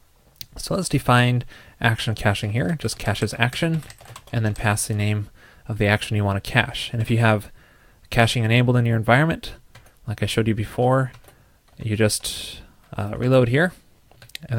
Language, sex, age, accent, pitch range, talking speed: English, male, 20-39, American, 105-125 Hz, 175 wpm